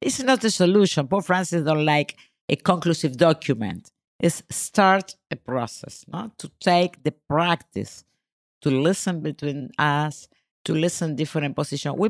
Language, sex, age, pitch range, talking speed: English, female, 50-69, 140-190 Hz, 140 wpm